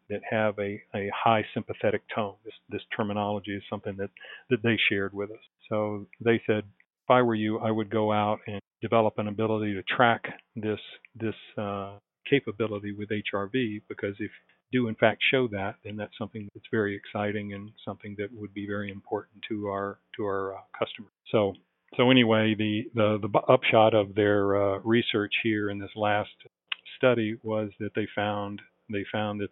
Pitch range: 100-110 Hz